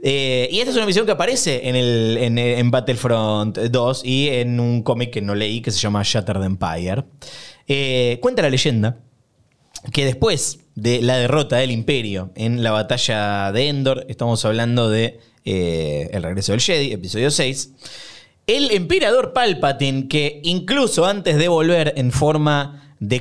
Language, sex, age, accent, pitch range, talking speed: Spanish, male, 20-39, Argentinian, 115-165 Hz, 160 wpm